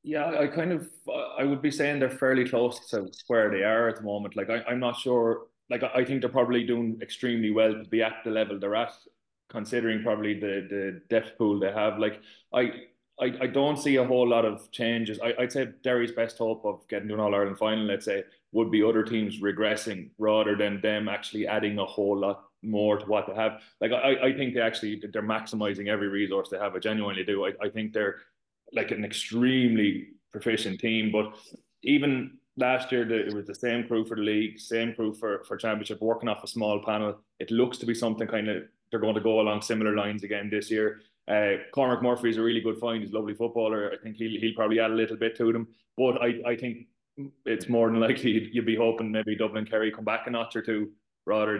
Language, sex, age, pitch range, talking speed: English, male, 20-39, 105-115 Hz, 235 wpm